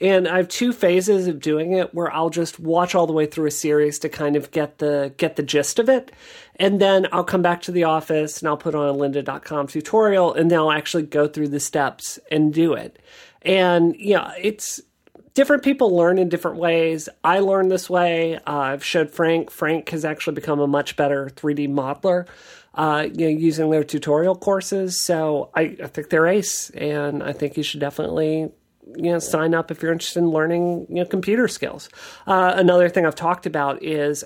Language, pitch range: English, 150-180 Hz